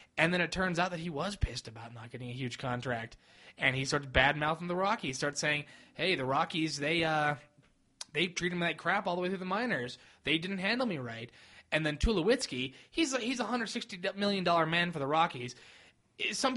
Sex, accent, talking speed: male, American, 205 wpm